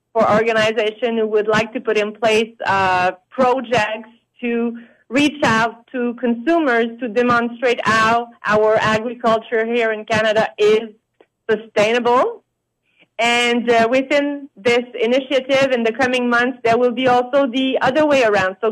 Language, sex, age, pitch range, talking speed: English, female, 30-49, 220-260 Hz, 140 wpm